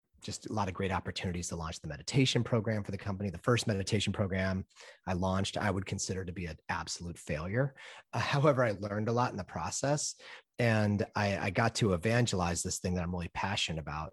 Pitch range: 85-105 Hz